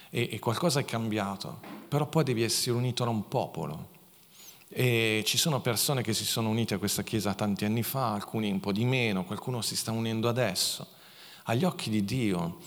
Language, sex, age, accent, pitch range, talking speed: Italian, male, 40-59, native, 105-130 Hz, 190 wpm